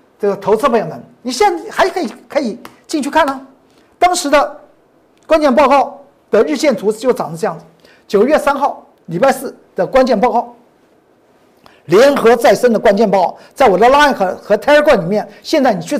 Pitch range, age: 215-315 Hz, 50-69